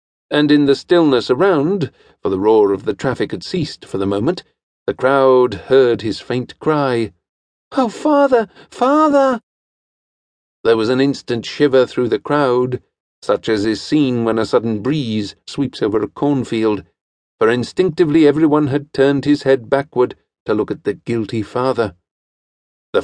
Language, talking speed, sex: English, 155 wpm, male